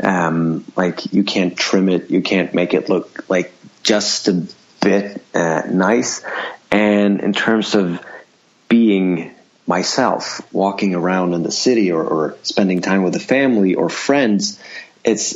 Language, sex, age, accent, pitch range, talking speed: English, male, 30-49, American, 90-105 Hz, 150 wpm